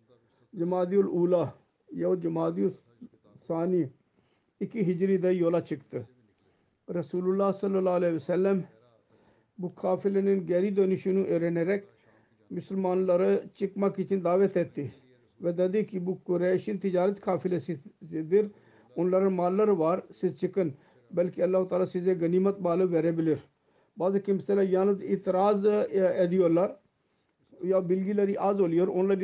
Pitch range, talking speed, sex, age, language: 165-195 Hz, 110 wpm, male, 50-69, Turkish